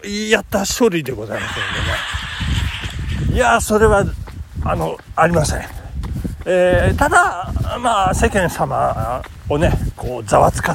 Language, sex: Japanese, male